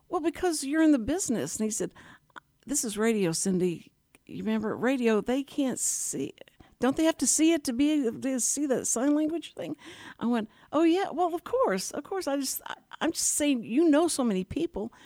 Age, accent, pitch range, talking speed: 60-79, American, 185-280 Hz, 215 wpm